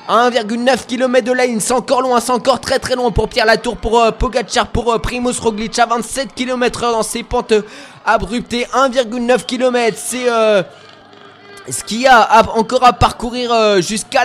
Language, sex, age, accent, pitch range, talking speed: French, male, 20-39, French, 220-250 Hz, 185 wpm